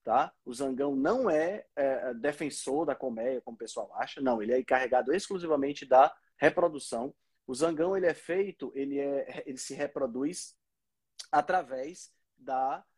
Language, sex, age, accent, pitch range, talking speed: Portuguese, male, 20-39, Brazilian, 130-180 Hz, 150 wpm